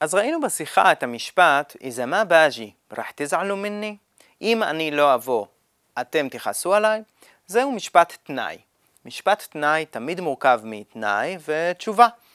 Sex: male